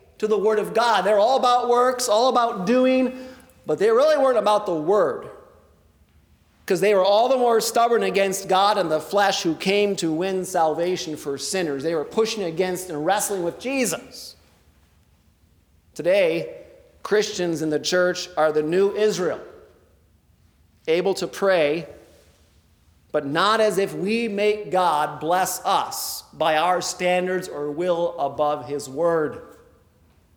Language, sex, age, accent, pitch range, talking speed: English, male, 40-59, American, 135-195 Hz, 150 wpm